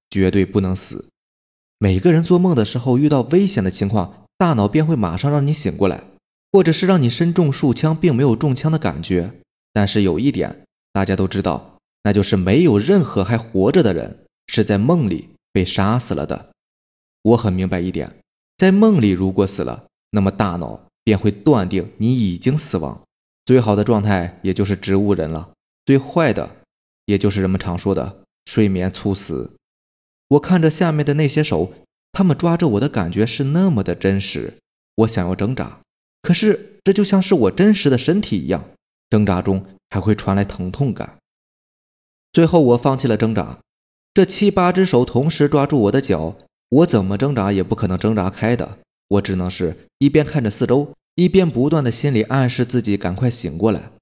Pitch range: 95-150 Hz